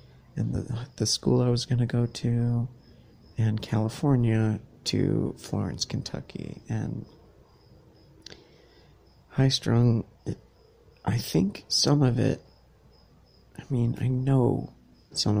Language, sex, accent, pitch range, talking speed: English, male, American, 105-125 Hz, 115 wpm